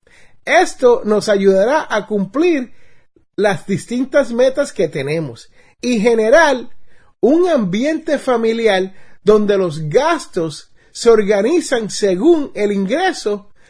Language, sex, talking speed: Spanish, male, 100 wpm